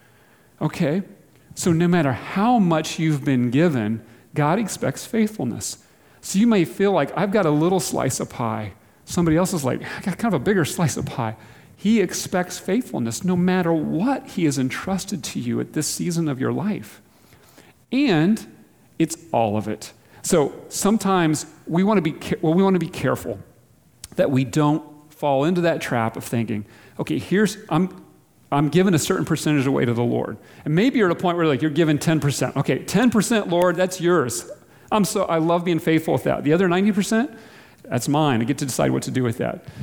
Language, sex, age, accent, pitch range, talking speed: English, male, 40-59, American, 145-195 Hz, 195 wpm